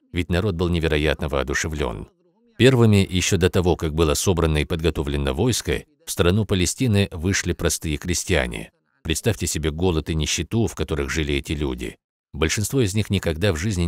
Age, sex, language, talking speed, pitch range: 50-69, male, Russian, 160 wpm, 80-100 Hz